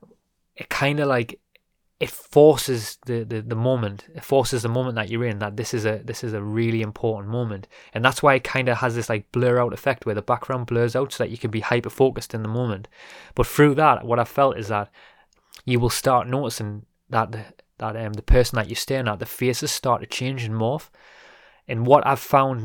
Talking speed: 230 wpm